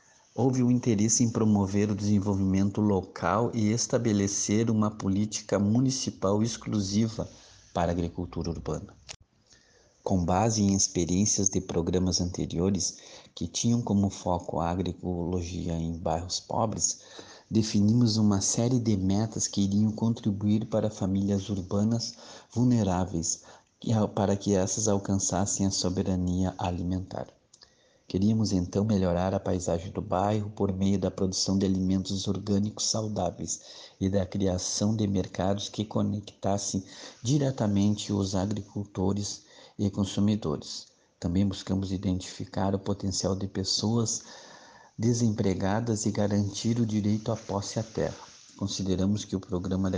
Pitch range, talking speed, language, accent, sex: 95-105 Hz, 120 wpm, Portuguese, Brazilian, male